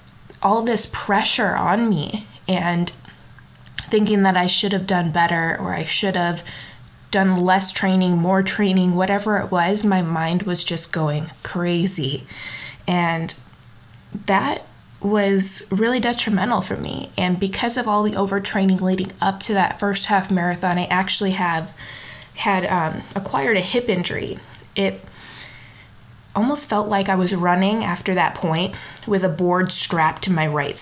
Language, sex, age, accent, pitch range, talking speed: English, female, 20-39, American, 160-195 Hz, 150 wpm